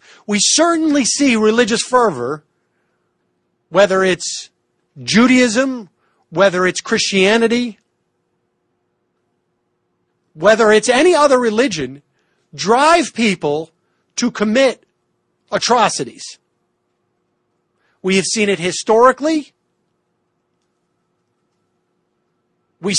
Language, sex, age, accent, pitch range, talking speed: English, male, 50-69, American, 175-245 Hz, 70 wpm